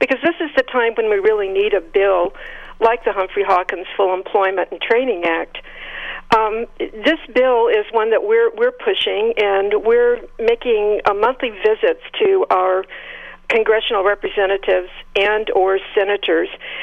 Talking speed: 150 wpm